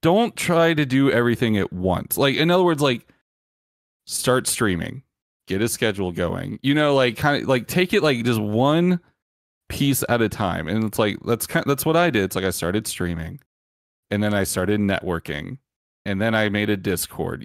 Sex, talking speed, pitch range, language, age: male, 200 wpm, 95-130 Hz, English, 30-49